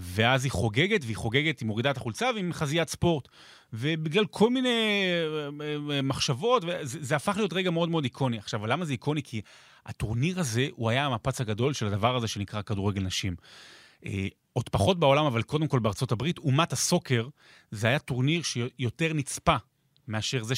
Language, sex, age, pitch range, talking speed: Hebrew, male, 30-49, 120-155 Hz, 170 wpm